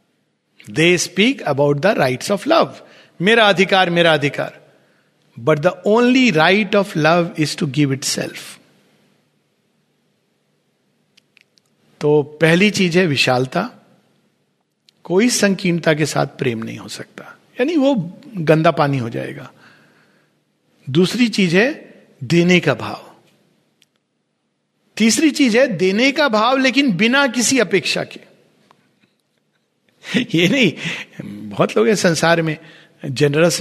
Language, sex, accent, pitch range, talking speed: Hindi, male, native, 145-195 Hz, 120 wpm